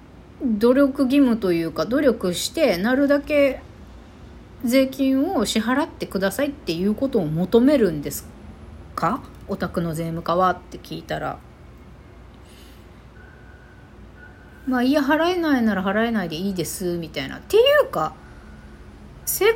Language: Japanese